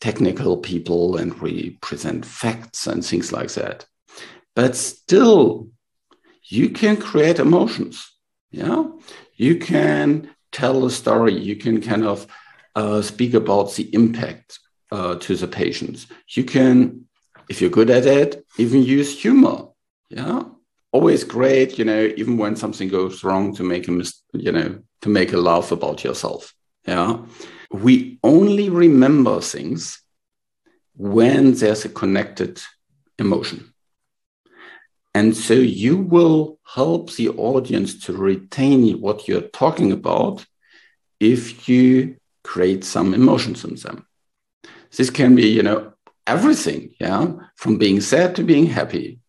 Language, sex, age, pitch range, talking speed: English, male, 50-69, 105-155 Hz, 135 wpm